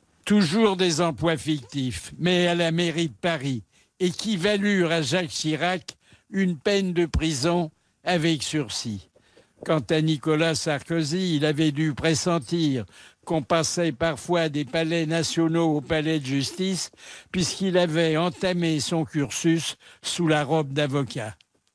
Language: French